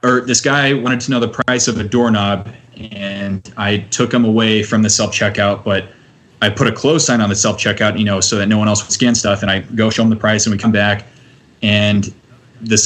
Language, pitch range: English, 105-120 Hz